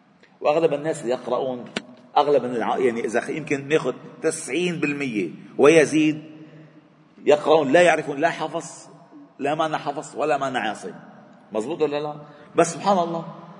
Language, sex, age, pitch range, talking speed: Arabic, male, 40-59, 135-180 Hz, 125 wpm